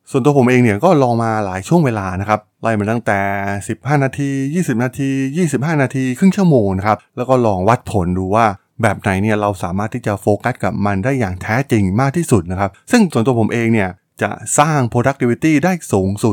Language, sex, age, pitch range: Thai, male, 20-39, 100-130 Hz